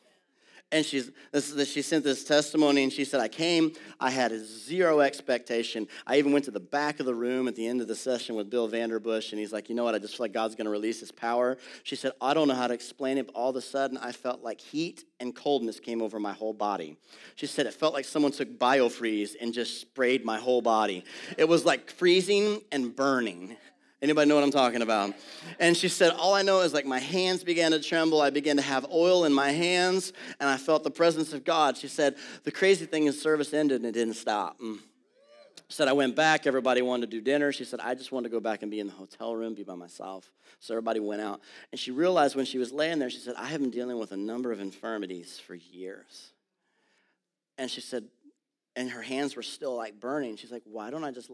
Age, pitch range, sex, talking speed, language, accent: 30-49, 115-150 Hz, male, 245 wpm, English, American